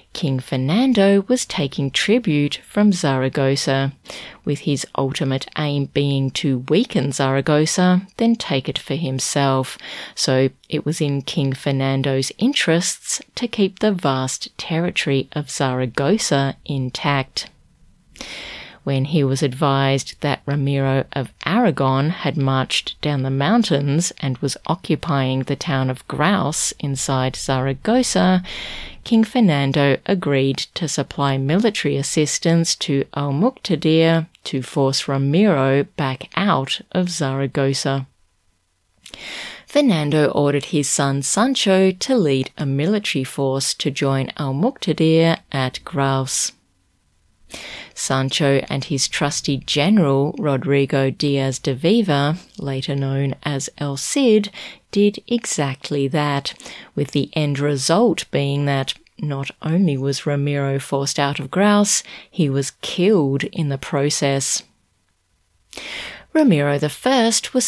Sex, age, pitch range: female, 30-49, 135-170 Hz